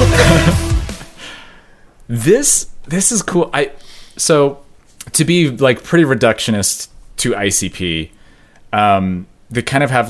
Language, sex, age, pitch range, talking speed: English, male, 30-49, 100-125 Hz, 105 wpm